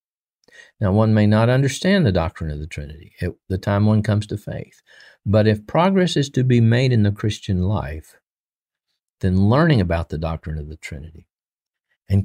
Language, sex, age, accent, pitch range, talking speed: English, male, 50-69, American, 85-110 Hz, 180 wpm